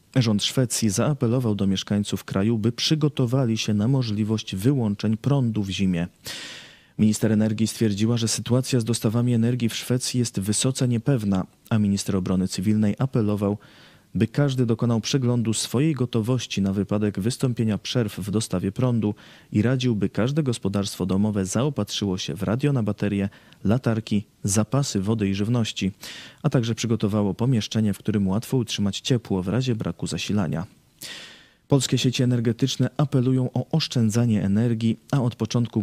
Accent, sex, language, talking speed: native, male, Polish, 145 wpm